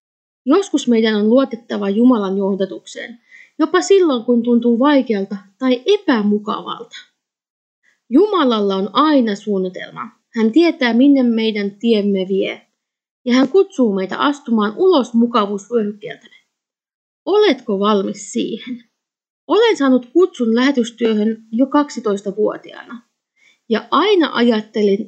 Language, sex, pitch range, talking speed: Finnish, female, 210-290 Hz, 100 wpm